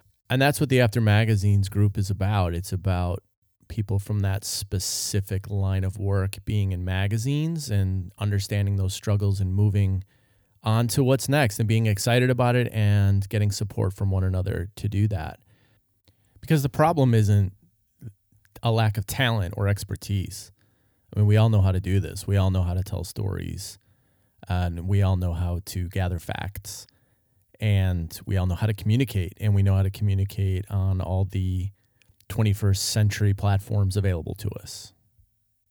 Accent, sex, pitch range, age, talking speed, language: American, male, 100-115 Hz, 30-49, 170 wpm, English